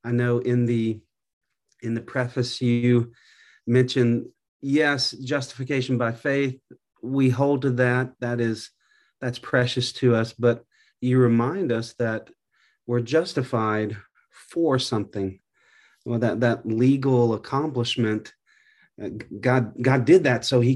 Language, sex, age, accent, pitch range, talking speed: English, male, 40-59, American, 110-130 Hz, 125 wpm